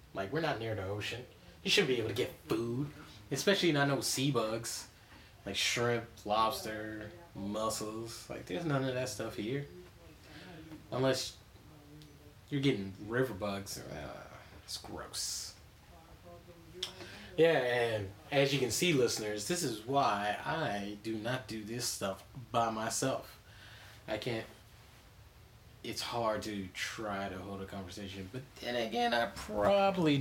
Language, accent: English, American